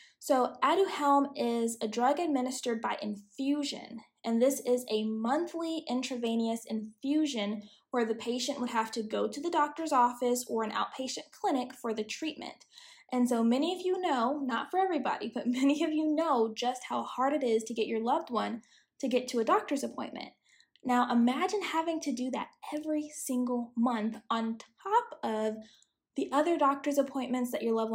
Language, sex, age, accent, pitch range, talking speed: English, female, 10-29, American, 225-285 Hz, 175 wpm